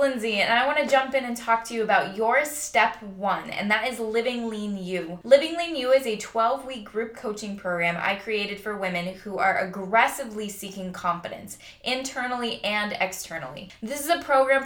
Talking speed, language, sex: 190 wpm, English, female